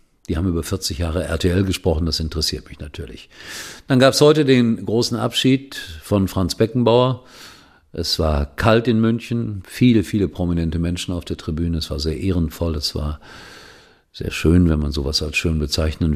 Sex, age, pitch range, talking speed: male, 50-69, 80-105 Hz, 175 wpm